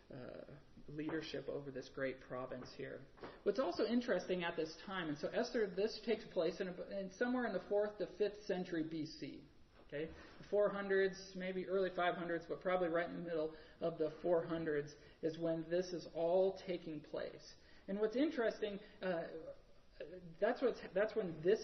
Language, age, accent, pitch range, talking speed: English, 40-59, American, 170-210 Hz, 170 wpm